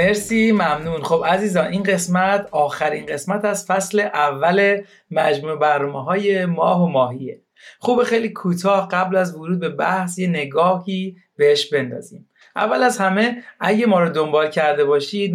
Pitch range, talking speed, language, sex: 155-205 Hz, 145 wpm, Persian, male